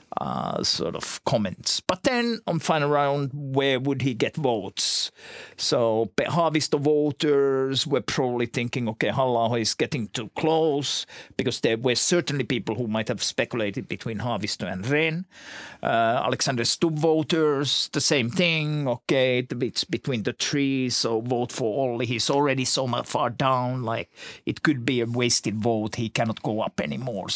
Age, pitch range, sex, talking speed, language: 50-69, 120-150 Hz, male, 160 wpm, Finnish